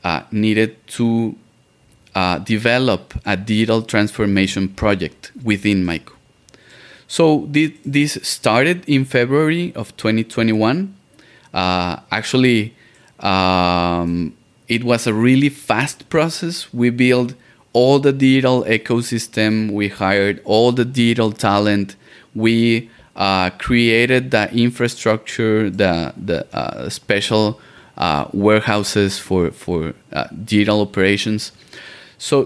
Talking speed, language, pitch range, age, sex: 105 wpm, English, 105-125 Hz, 30-49, male